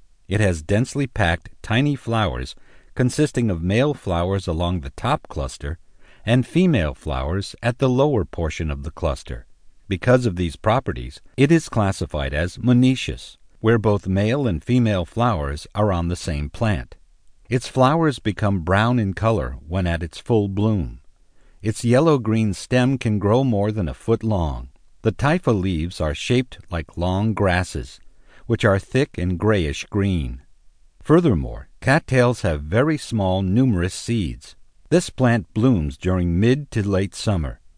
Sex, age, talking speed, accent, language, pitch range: male, 50-69, 150 wpm, American, English, 85-120 Hz